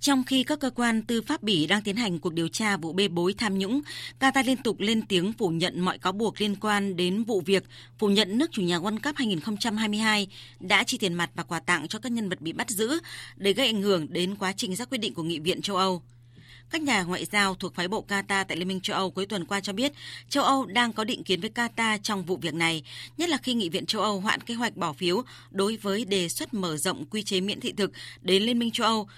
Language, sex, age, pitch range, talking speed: Vietnamese, female, 20-39, 180-220 Hz, 265 wpm